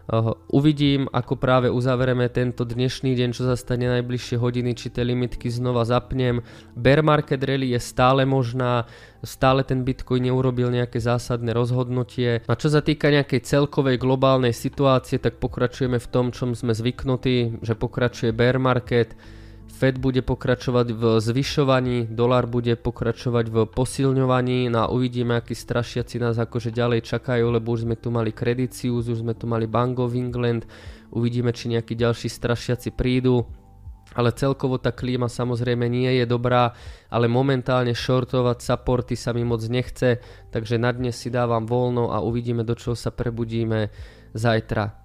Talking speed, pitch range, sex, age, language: 155 wpm, 115-125 Hz, male, 20-39, Slovak